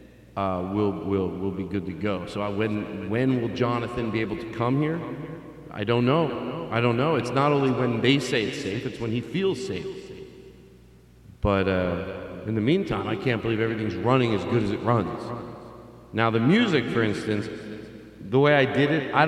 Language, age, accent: English, 40-59, American